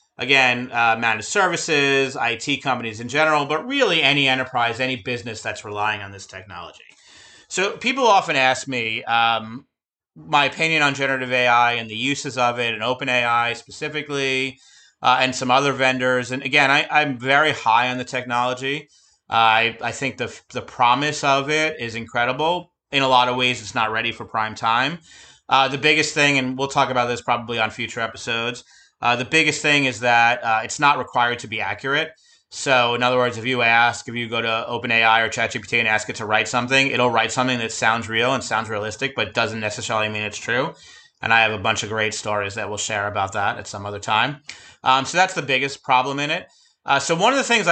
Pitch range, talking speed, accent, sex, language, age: 115-140 Hz, 210 wpm, American, male, English, 30-49